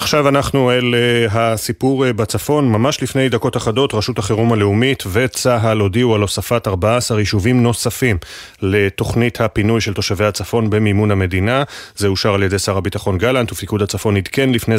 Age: 30-49